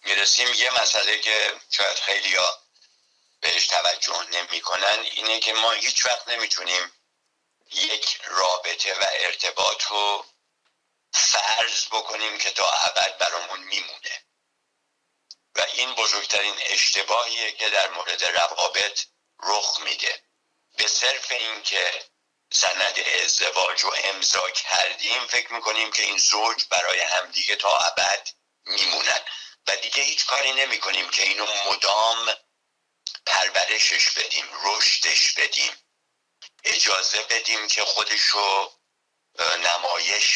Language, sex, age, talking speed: Persian, male, 60-79, 115 wpm